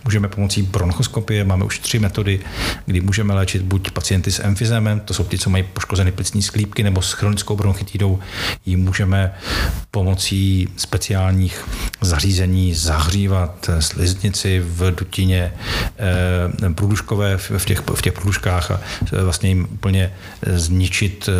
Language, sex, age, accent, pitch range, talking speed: Czech, male, 50-69, native, 95-105 Hz, 125 wpm